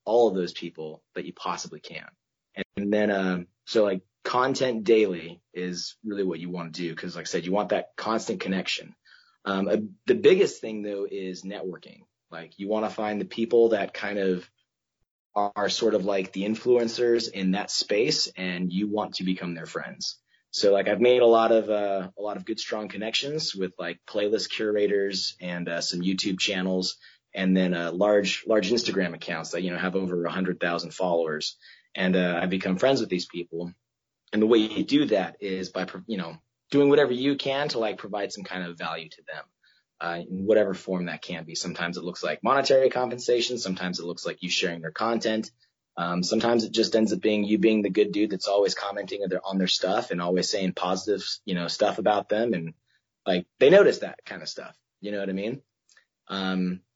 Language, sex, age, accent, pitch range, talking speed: English, male, 30-49, American, 90-110 Hz, 210 wpm